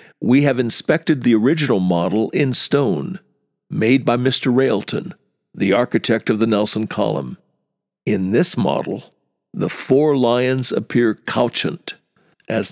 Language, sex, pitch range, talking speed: English, male, 115-145 Hz, 125 wpm